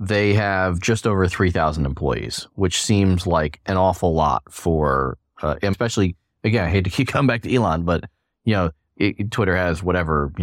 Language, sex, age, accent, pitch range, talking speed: English, male, 30-49, American, 80-105 Hz, 190 wpm